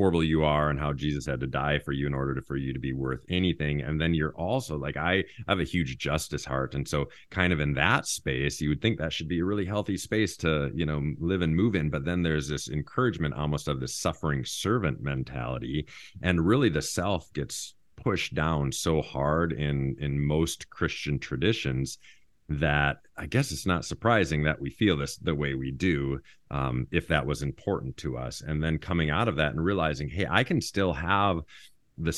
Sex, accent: male, American